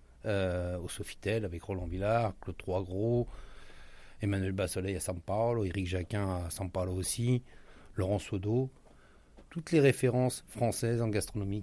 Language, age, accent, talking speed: French, 30-49, French, 140 wpm